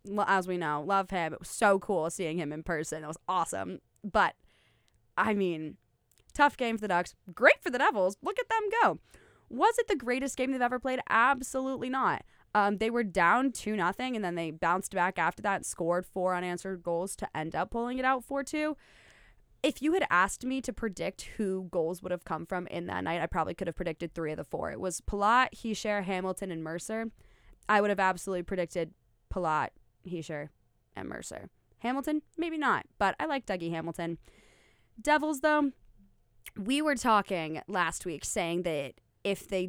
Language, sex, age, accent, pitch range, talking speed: English, female, 20-39, American, 160-220 Hz, 195 wpm